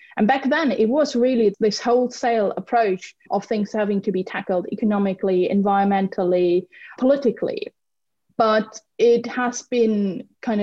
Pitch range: 190-240 Hz